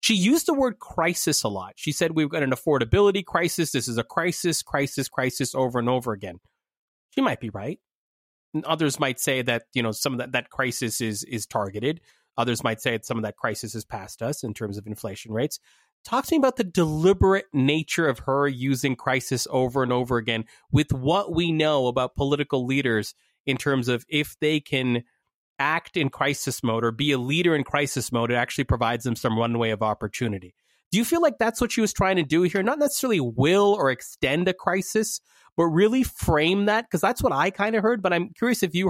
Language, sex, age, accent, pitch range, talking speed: English, male, 30-49, American, 125-170 Hz, 220 wpm